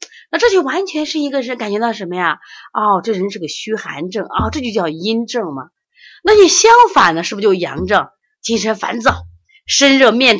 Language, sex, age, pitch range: Chinese, female, 30-49, 170-290 Hz